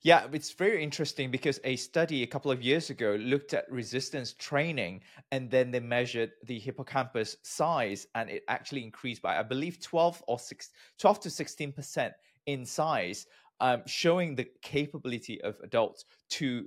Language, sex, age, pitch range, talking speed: English, male, 20-39, 120-150 Hz, 165 wpm